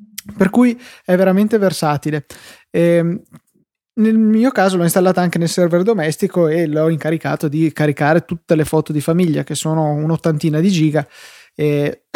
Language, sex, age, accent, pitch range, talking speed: Italian, male, 20-39, native, 155-180 Hz, 155 wpm